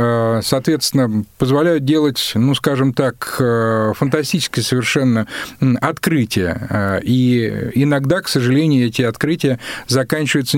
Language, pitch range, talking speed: Russian, 120-150 Hz, 90 wpm